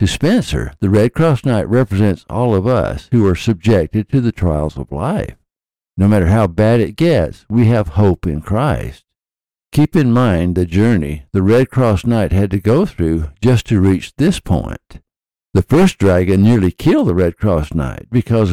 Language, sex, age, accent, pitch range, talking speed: English, male, 60-79, American, 85-115 Hz, 185 wpm